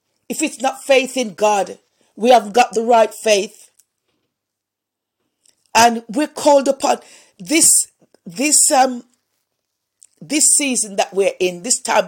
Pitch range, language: 190-240 Hz, English